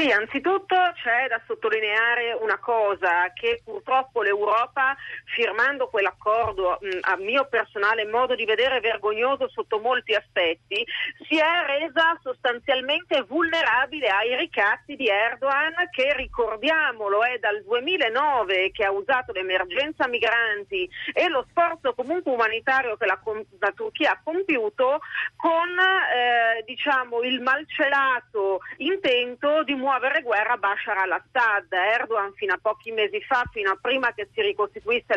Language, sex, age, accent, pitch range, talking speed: Italian, female, 40-59, native, 220-315 Hz, 125 wpm